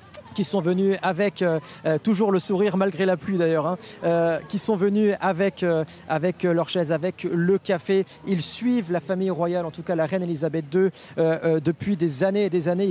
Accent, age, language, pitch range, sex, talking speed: French, 40-59, French, 175-210 Hz, male, 200 wpm